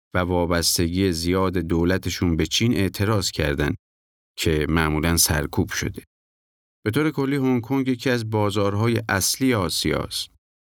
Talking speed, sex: 125 wpm, male